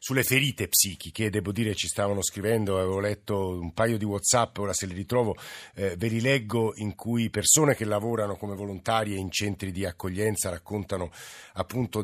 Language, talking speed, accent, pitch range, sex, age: Italian, 175 wpm, native, 90-110 Hz, male, 50-69